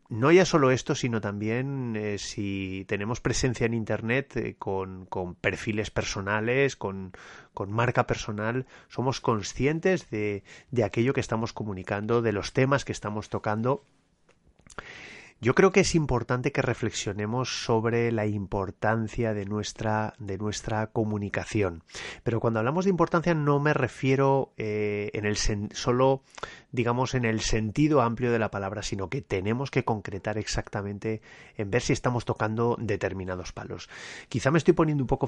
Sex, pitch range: male, 105-130 Hz